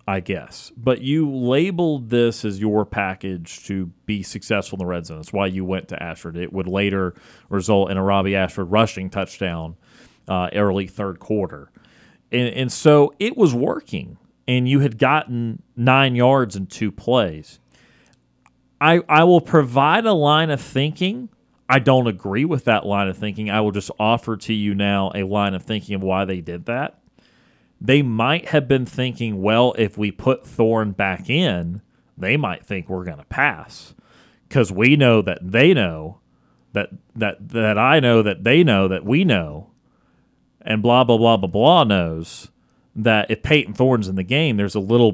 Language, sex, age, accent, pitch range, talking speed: English, male, 30-49, American, 95-125 Hz, 180 wpm